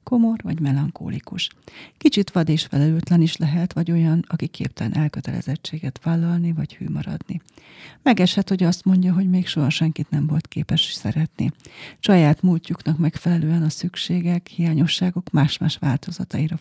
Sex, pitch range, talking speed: female, 155-185 Hz, 140 wpm